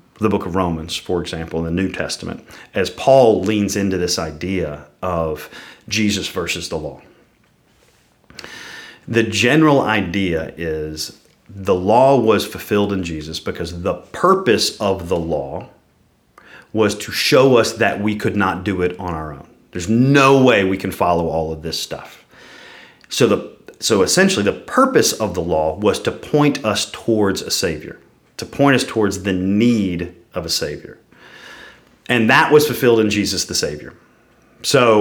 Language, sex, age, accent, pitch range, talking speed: English, male, 40-59, American, 85-110 Hz, 160 wpm